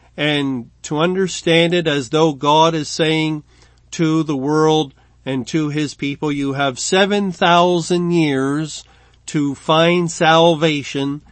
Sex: male